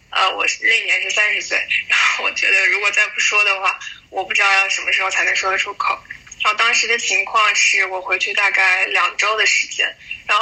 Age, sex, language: 10-29, female, Chinese